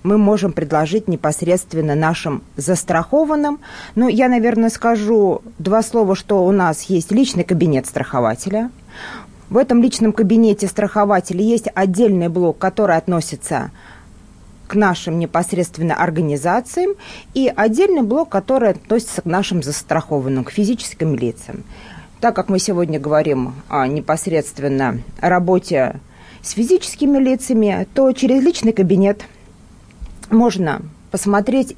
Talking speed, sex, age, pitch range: 115 wpm, female, 30-49, 155-220 Hz